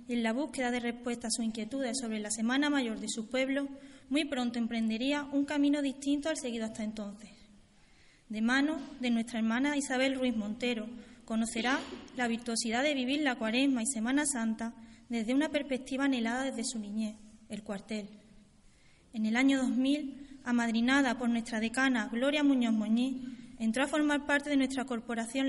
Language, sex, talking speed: Spanish, female, 165 wpm